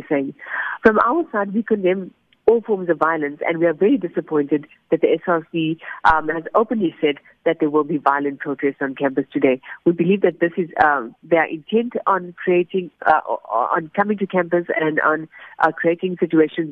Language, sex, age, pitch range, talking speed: English, female, 50-69, 155-205 Hz, 185 wpm